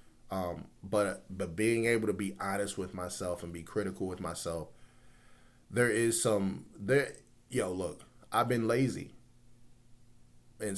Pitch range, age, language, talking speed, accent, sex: 95-120 Hz, 30-49, English, 140 wpm, American, male